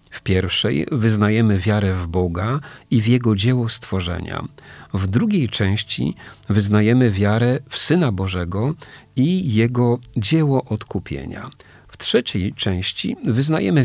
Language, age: Polish, 40-59